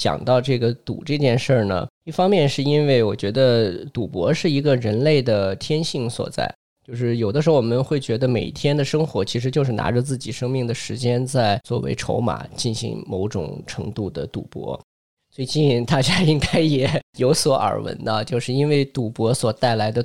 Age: 20-39